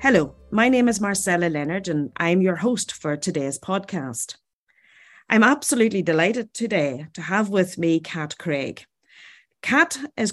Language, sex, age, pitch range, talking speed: English, female, 30-49, 155-215 Hz, 145 wpm